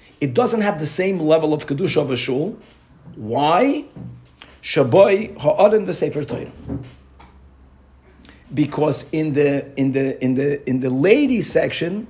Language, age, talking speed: English, 50-69, 125 wpm